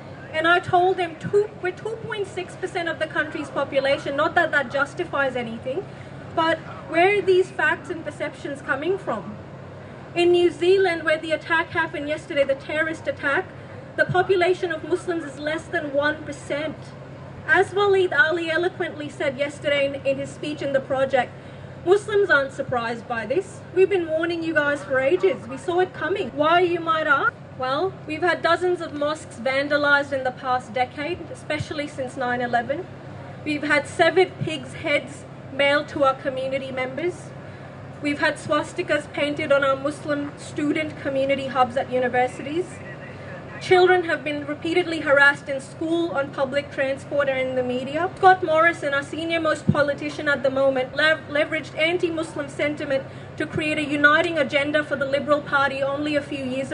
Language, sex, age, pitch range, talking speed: English, female, 30-49, 275-335 Hz, 160 wpm